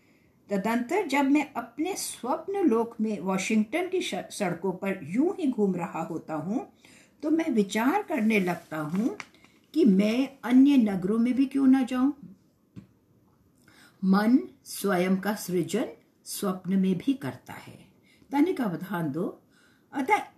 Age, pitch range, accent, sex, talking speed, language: 60-79, 185-285 Hz, Indian, female, 135 wpm, English